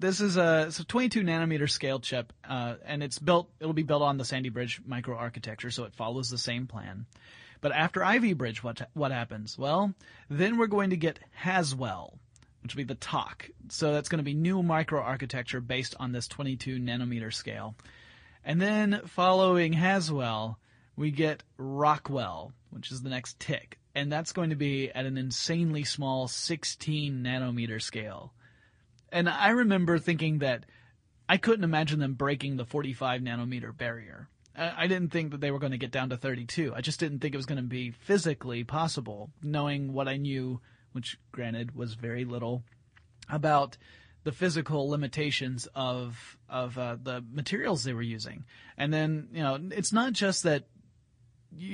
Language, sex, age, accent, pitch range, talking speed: English, male, 30-49, American, 120-155 Hz, 175 wpm